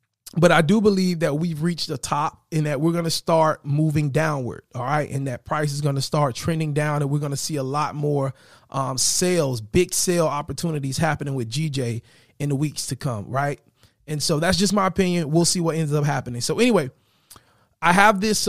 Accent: American